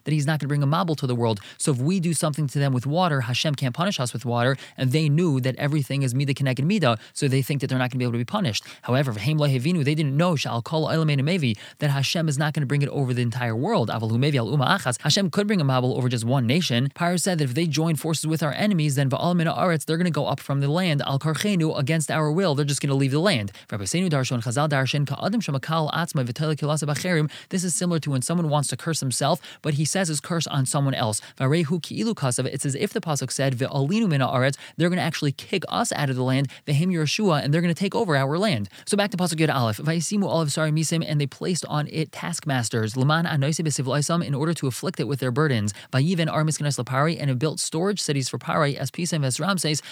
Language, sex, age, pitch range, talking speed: English, male, 20-39, 135-165 Hz, 215 wpm